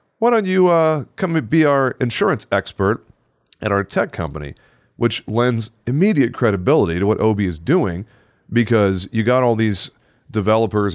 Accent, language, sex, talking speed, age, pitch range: American, English, male, 155 wpm, 40-59, 90-120 Hz